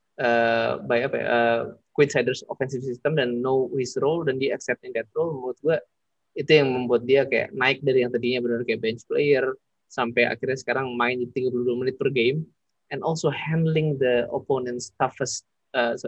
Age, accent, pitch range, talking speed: 20-39, native, 120-155 Hz, 185 wpm